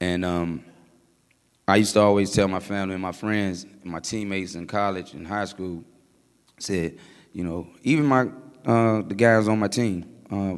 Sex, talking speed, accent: male, 175 wpm, American